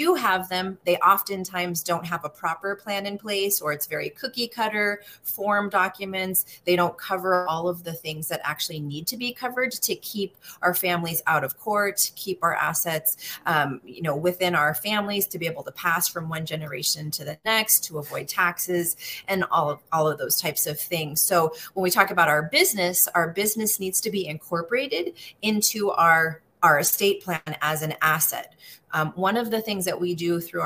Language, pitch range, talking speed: English, 165-210 Hz, 195 wpm